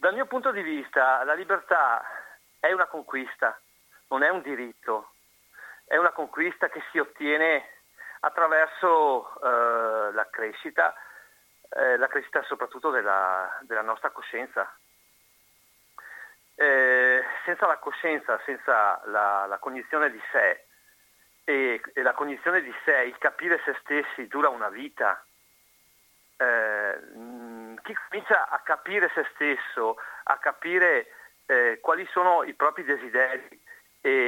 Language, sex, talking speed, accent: Italian, male, 125 wpm, native